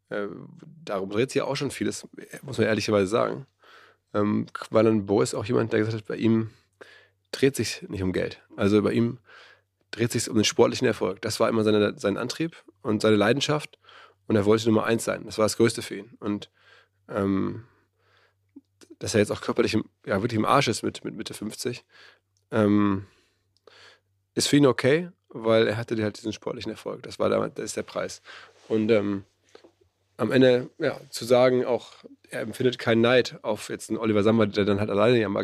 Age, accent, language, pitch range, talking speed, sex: 20-39, German, German, 105-120 Hz, 195 wpm, male